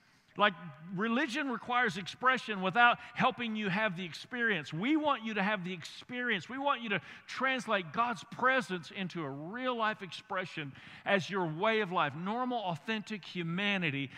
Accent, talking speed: American, 155 wpm